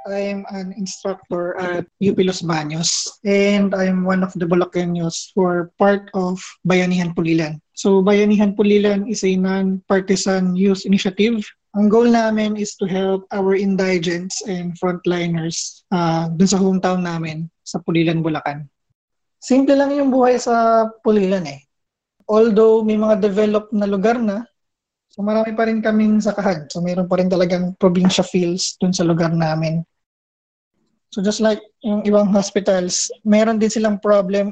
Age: 20-39